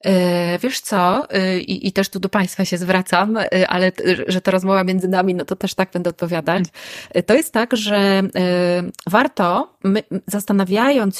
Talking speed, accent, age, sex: 150 wpm, native, 30-49, female